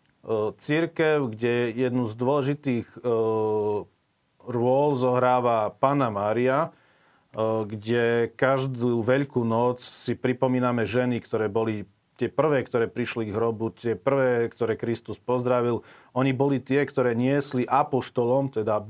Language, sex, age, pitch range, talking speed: Slovak, male, 40-59, 115-130 Hz, 115 wpm